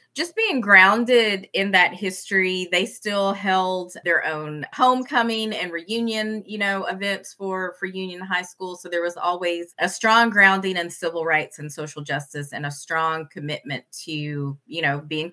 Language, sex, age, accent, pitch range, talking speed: English, female, 30-49, American, 160-205 Hz, 170 wpm